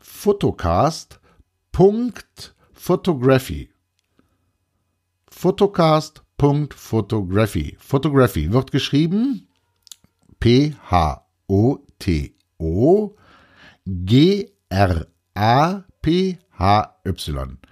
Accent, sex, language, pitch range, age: German, male, German, 90-155 Hz, 60-79